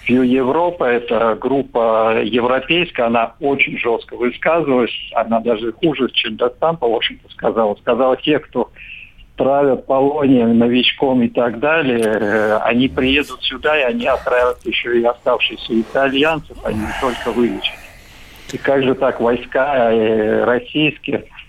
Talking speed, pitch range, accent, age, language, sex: 130 wpm, 115-135 Hz, native, 50-69, Russian, male